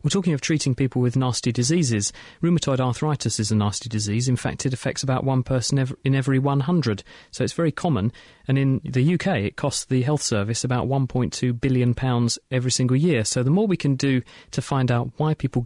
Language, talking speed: English, 205 wpm